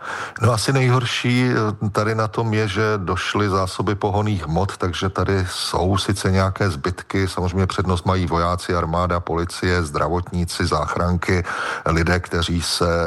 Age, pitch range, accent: 40-59, 85-95 Hz, native